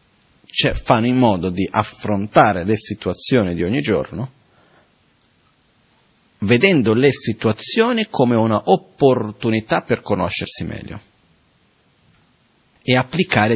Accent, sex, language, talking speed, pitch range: native, male, Italian, 95 wpm, 100-120 Hz